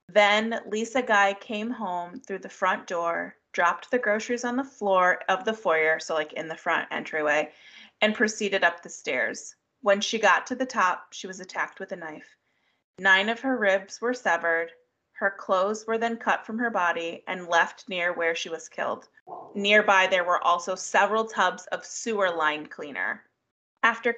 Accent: American